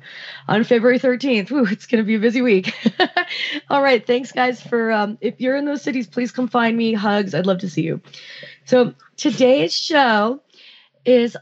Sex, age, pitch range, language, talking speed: female, 30-49, 175-240 Hz, English, 180 wpm